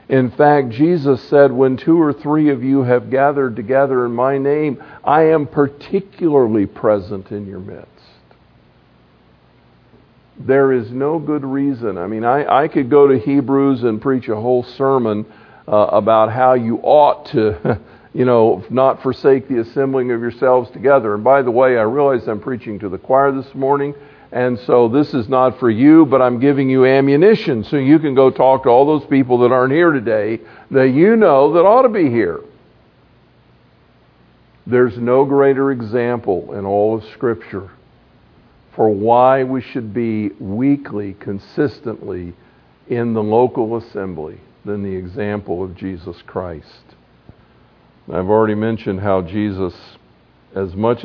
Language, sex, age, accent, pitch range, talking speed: English, male, 50-69, American, 105-135 Hz, 155 wpm